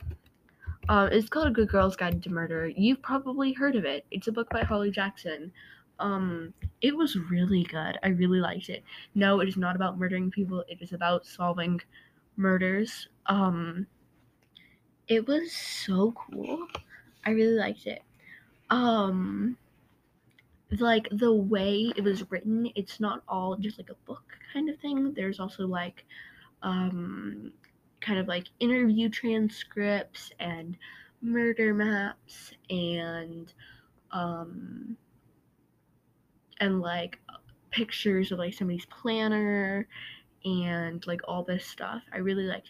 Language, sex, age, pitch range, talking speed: English, female, 10-29, 180-225 Hz, 135 wpm